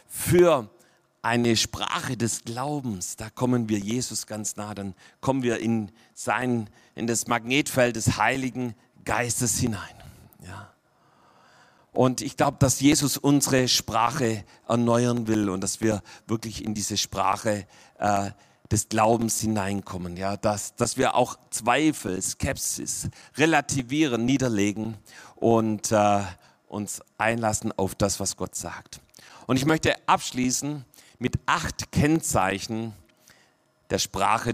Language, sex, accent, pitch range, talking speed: German, male, German, 105-130 Hz, 125 wpm